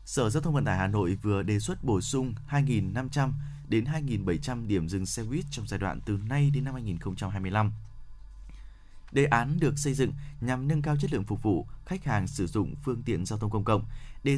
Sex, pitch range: male, 105-145 Hz